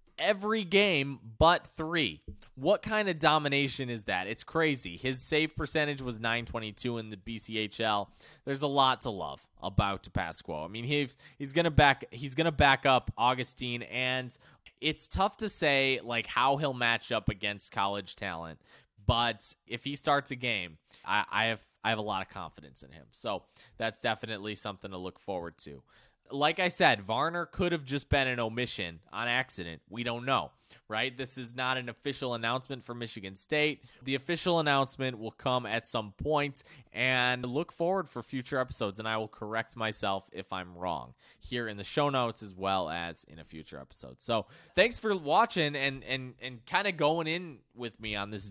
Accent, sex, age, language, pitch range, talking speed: American, male, 20-39, English, 110-145 Hz, 185 wpm